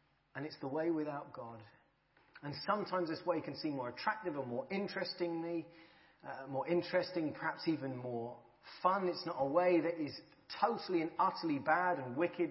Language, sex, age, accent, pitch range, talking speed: English, male, 40-59, British, 135-175 Hz, 175 wpm